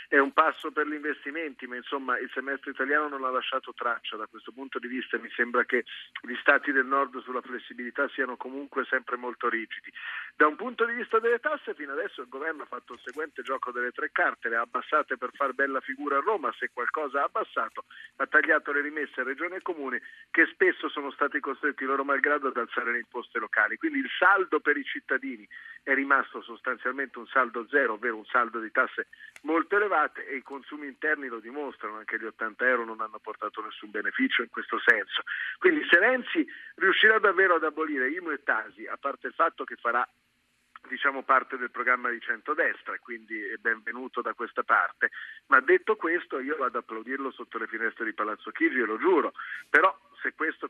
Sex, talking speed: male, 200 wpm